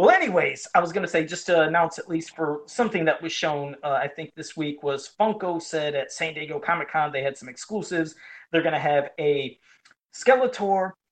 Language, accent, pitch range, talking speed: English, American, 155-220 Hz, 210 wpm